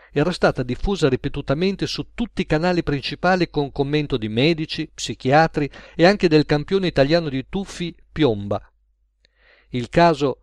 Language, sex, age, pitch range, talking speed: Italian, male, 50-69, 125-160 Hz, 140 wpm